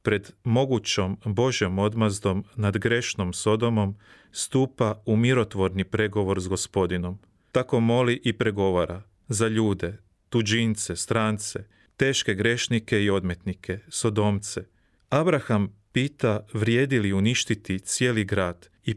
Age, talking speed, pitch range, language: 40-59, 105 wpm, 100-115 Hz, Croatian